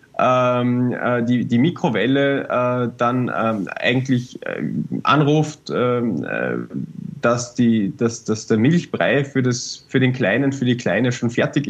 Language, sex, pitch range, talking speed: German, male, 115-140 Hz, 105 wpm